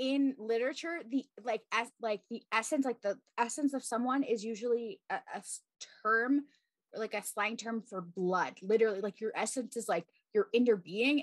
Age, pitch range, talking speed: 20-39, 185-245 Hz, 180 wpm